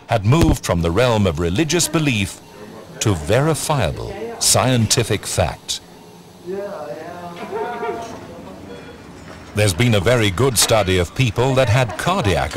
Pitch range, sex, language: 100-145 Hz, male, English